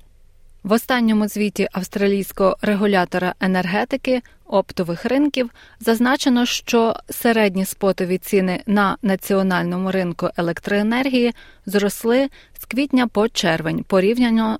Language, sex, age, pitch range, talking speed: Ukrainian, female, 20-39, 185-235 Hz, 95 wpm